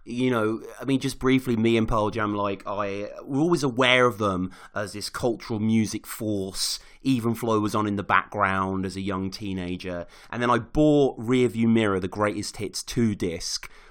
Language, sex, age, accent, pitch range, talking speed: English, male, 30-49, British, 105-135 Hz, 190 wpm